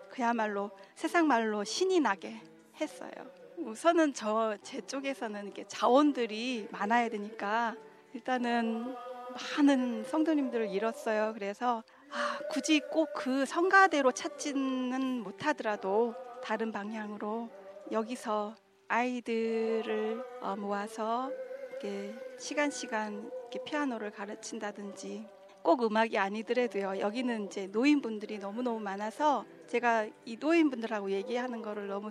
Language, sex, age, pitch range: Korean, female, 40-59, 215-270 Hz